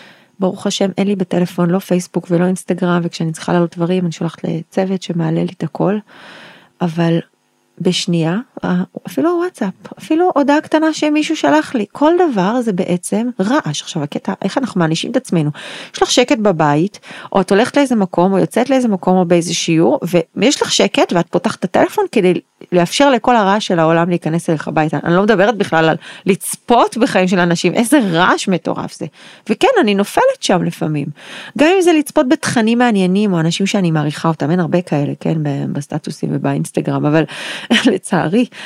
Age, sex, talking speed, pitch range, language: 30-49, female, 155 wpm, 170-245 Hz, Hebrew